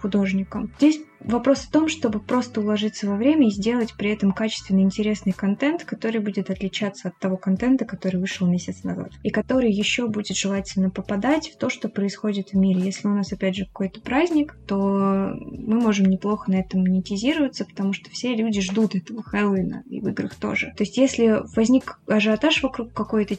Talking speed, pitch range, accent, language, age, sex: 180 wpm, 200-235 Hz, native, Russian, 20-39, female